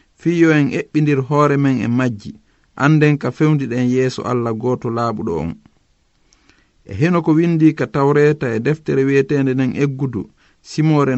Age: 50-69